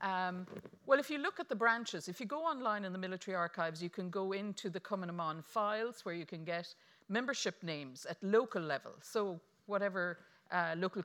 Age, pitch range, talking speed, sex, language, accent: 50-69, 175-215 Hz, 200 wpm, female, English, Irish